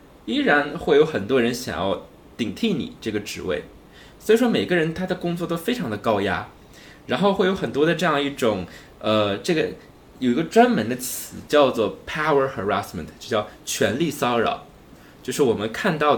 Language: Chinese